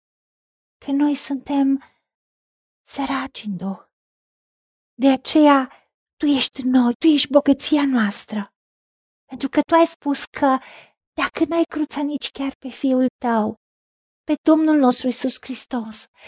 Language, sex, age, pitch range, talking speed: Romanian, female, 40-59, 220-295 Hz, 125 wpm